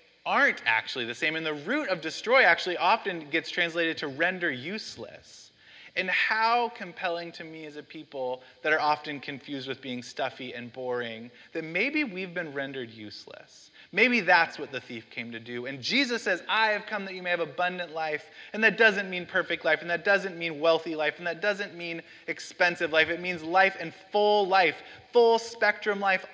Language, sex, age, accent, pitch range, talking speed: English, male, 20-39, American, 145-195 Hz, 195 wpm